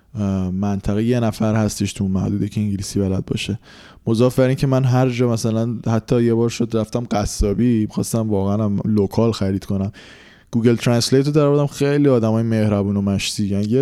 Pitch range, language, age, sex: 100-125 Hz, English, 20-39, male